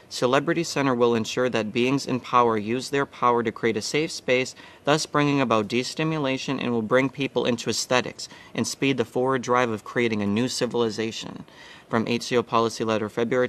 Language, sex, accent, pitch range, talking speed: English, male, American, 115-135 Hz, 180 wpm